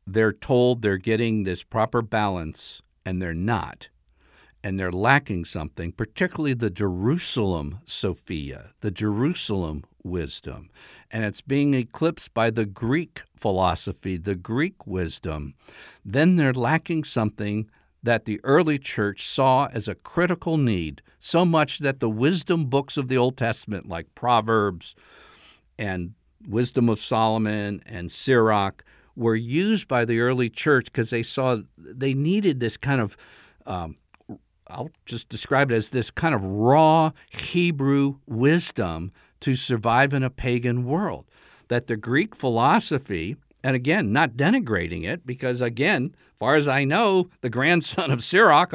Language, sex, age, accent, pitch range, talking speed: English, male, 60-79, American, 105-150 Hz, 140 wpm